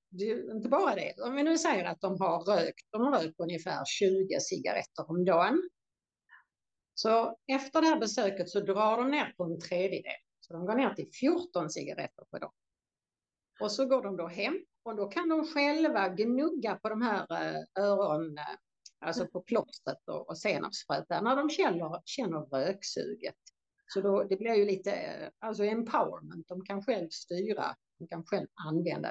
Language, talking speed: Swedish, 170 wpm